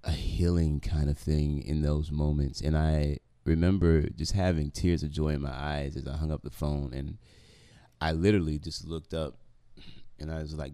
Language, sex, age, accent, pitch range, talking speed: English, male, 30-49, American, 75-90 Hz, 195 wpm